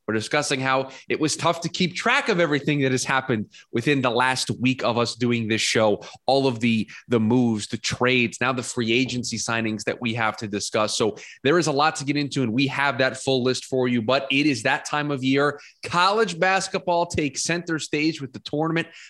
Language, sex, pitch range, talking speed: English, male, 125-150 Hz, 225 wpm